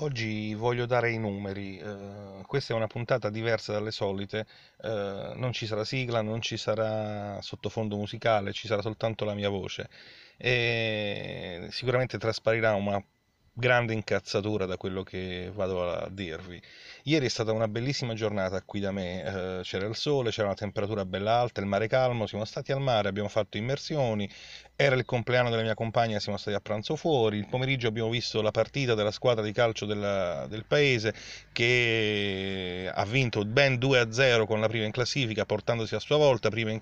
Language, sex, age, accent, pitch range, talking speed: Italian, male, 30-49, native, 100-125 Hz, 170 wpm